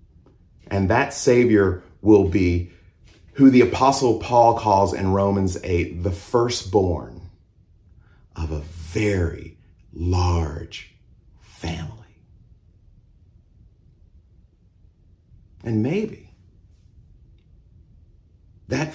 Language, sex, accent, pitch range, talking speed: English, male, American, 85-115 Hz, 75 wpm